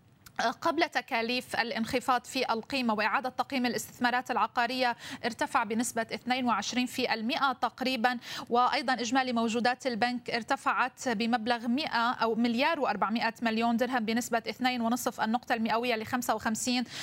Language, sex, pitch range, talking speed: Arabic, female, 230-265 Hz, 120 wpm